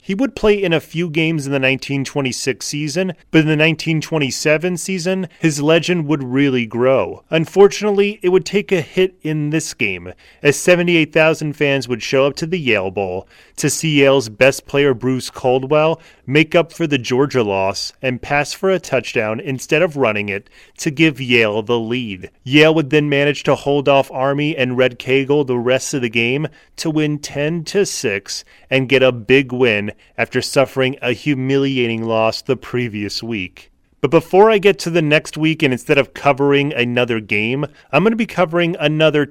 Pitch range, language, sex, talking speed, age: 125-160 Hz, English, male, 180 wpm, 30-49